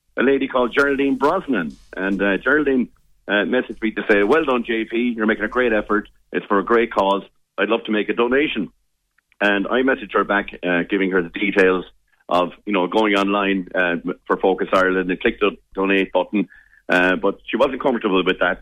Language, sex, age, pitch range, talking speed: English, male, 40-59, 100-120 Hz, 205 wpm